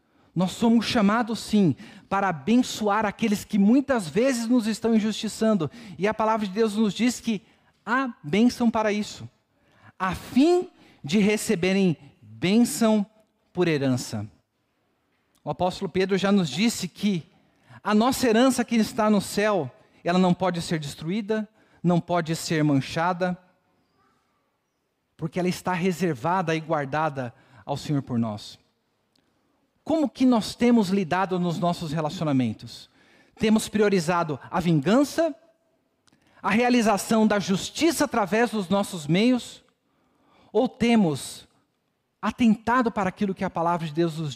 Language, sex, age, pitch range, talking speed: Portuguese, male, 50-69, 165-225 Hz, 130 wpm